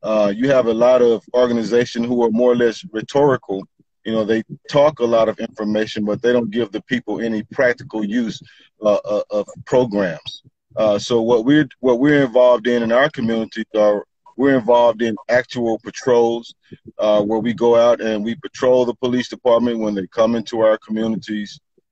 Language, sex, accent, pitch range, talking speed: English, male, American, 110-125 Hz, 185 wpm